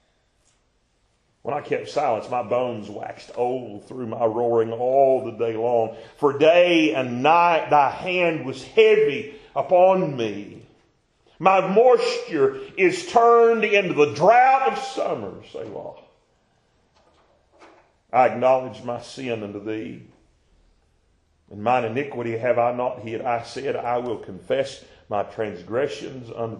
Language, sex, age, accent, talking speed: English, male, 50-69, American, 130 wpm